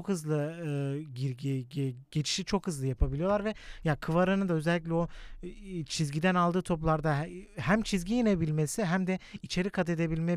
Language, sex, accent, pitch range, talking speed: Turkish, male, native, 155-185 Hz, 145 wpm